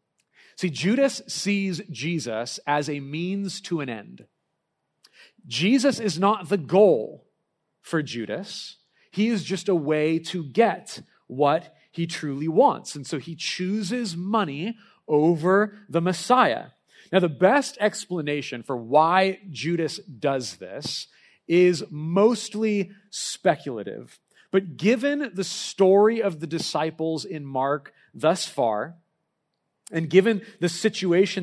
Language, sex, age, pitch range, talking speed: English, male, 40-59, 150-200 Hz, 120 wpm